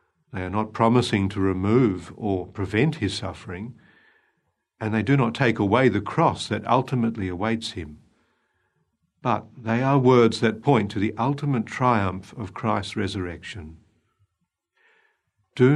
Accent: Australian